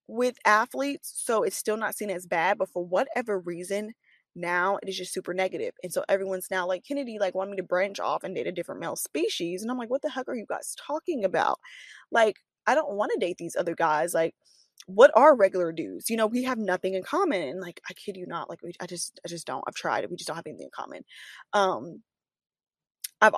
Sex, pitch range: female, 180-215 Hz